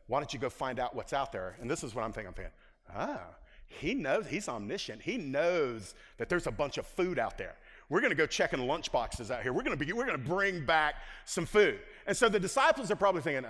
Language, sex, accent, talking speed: English, male, American, 240 wpm